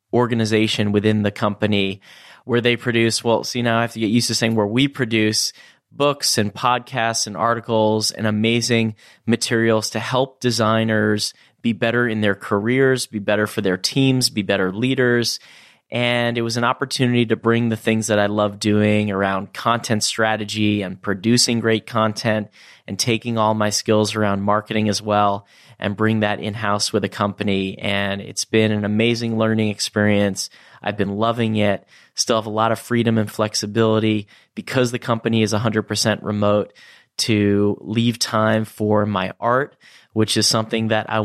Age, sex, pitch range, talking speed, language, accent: 30-49, male, 105-115 Hz, 170 wpm, English, American